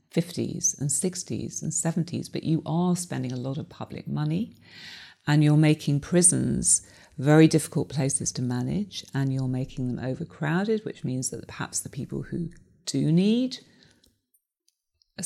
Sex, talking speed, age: female, 150 wpm, 40-59